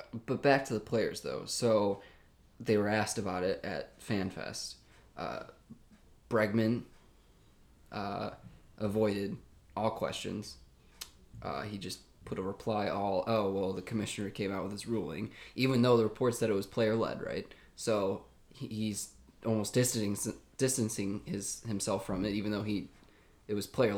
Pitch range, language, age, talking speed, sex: 95-115 Hz, English, 20-39, 155 wpm, male